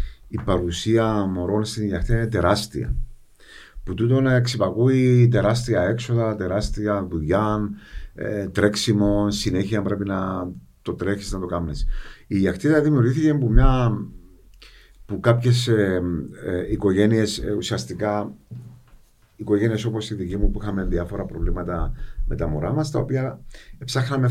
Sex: male